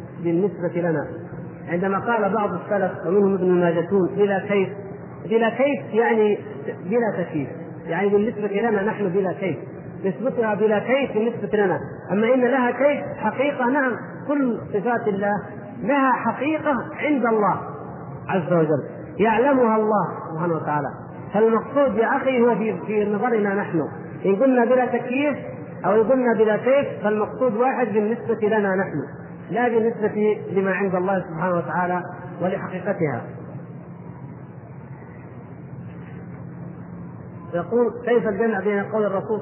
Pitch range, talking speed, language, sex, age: 175-225 Hz, 120 wpm, Arabic, male, 40-59